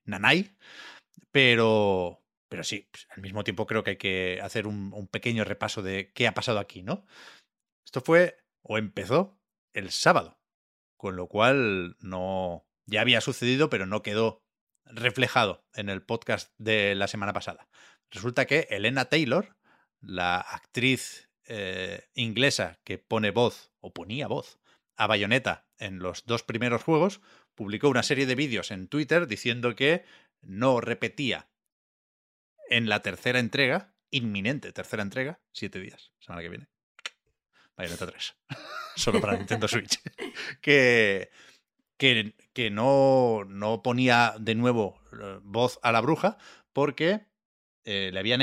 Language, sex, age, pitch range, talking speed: Spanish, male, 30-49, 105-135 Hz, 140 wpm